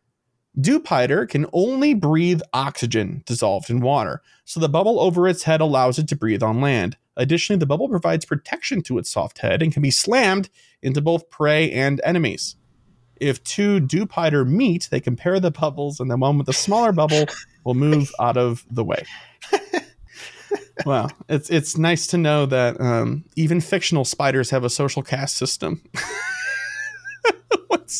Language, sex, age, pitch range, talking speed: English, male, 30-49, 130-180 Hz, 165 wpm